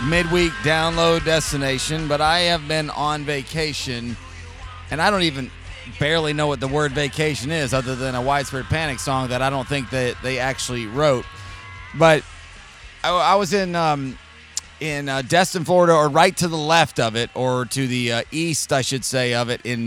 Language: English